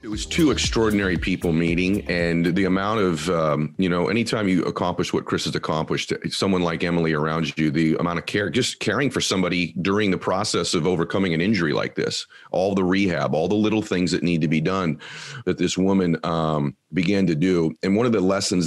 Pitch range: 85-105 Hz